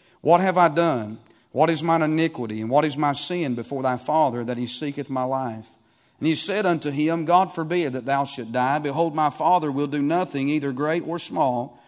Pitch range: 130-160 Hz